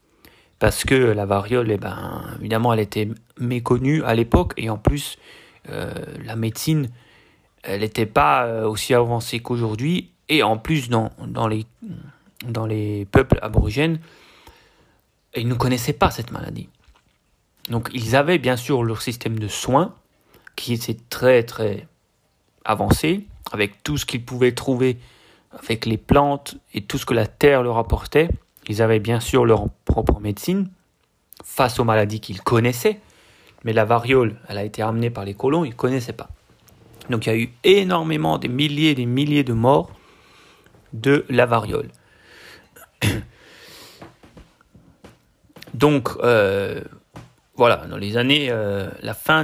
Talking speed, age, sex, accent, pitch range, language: 145 wpm, 30-49, male, French, 110-135 Hz, French